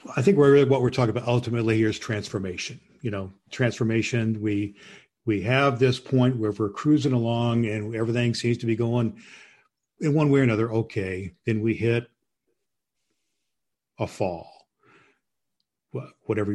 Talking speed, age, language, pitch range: 150 wpm, 50-69, English, 105-120 Hz